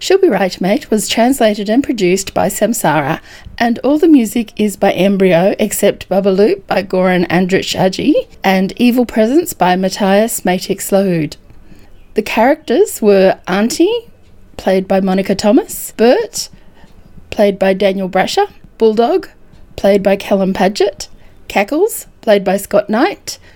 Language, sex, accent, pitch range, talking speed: English, female, Australian, 190-260 Hz, 140 wpm